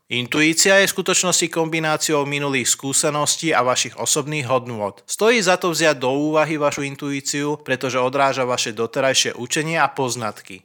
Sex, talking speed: male, 145 wpm